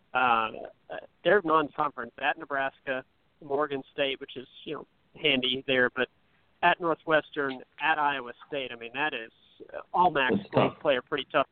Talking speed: 150 wpm